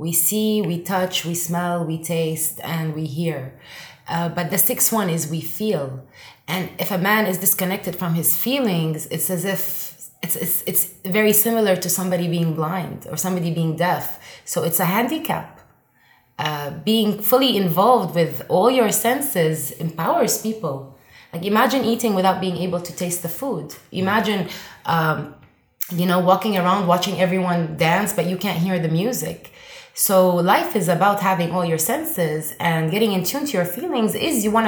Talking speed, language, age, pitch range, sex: 175 wpm, English, 20-39, 170-220 Hz, female